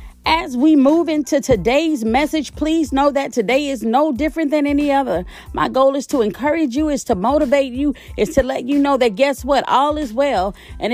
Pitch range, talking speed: 245-315 Hz, 210 wpm